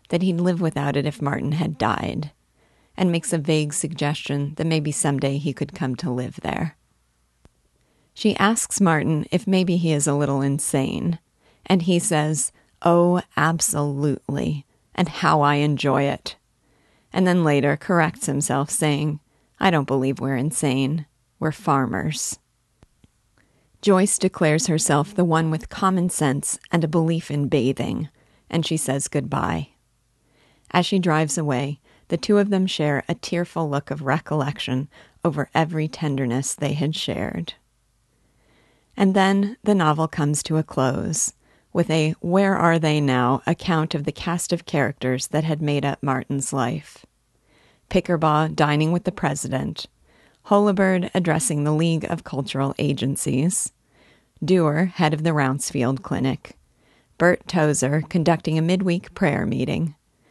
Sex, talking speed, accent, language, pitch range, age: female, 140 wpm, American, English, 140-170 Hz, 30-49